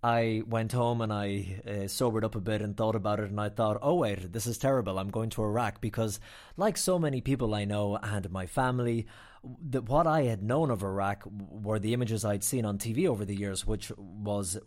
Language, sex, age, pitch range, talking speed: English, male, 30-49, 105-130 Hz, 220 wpm